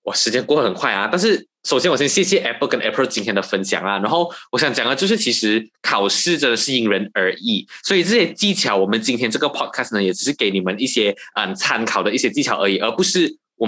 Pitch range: 115-185 Hz